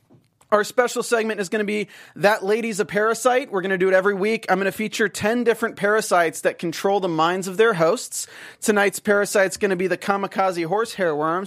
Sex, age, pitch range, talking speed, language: male, 30-49, 165-220 Hz, 220 wpm, English